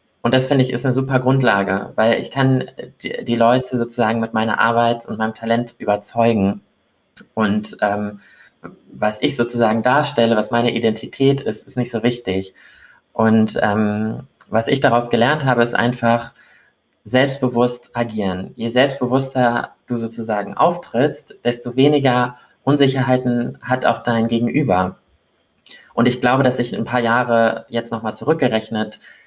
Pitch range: 115-130 Hz